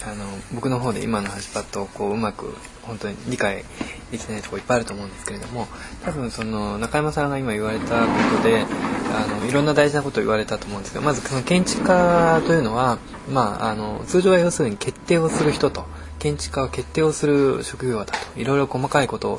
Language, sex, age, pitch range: Japanese, male, 20-39, 110-150 Hz